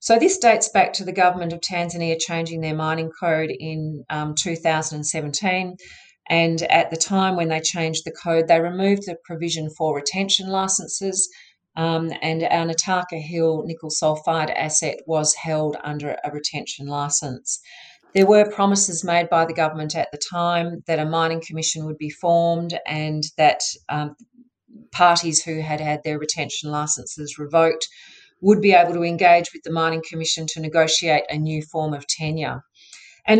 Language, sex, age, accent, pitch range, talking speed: English, female, 40-59, Australian, 150-175 Hz, 160 wpm